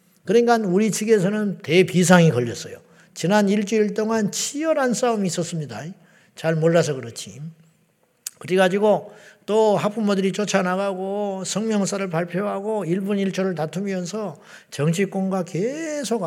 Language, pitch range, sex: Korean, 165-205 Hz, male